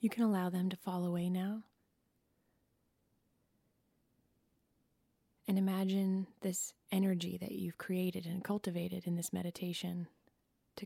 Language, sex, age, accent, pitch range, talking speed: English, female, 20-39, American, 175-195 Hz, 115 wpm